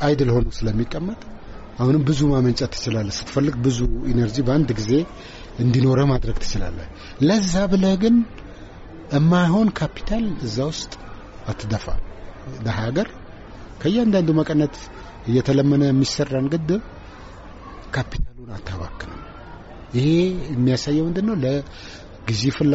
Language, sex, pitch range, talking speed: Amharic, male, 100-140 Hz, 75 wpm